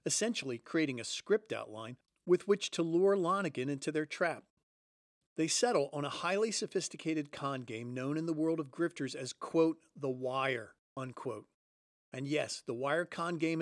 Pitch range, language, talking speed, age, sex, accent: 140-180 Hz, English, 170 wpm, 40-59, male, American